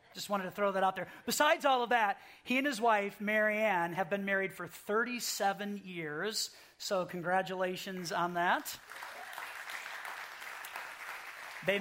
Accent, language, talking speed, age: American, English, 135 wpm, 40-59